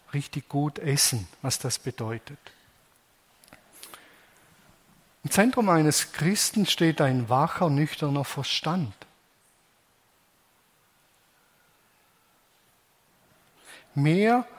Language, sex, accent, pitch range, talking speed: German, male, German, 135-170 Hz, 65 wpm